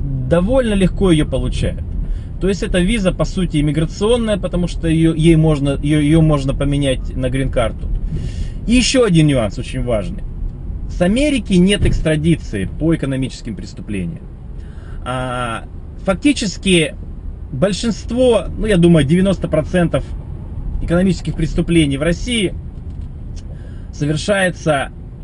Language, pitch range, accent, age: Russian, 100-165 Hz, native, 20-39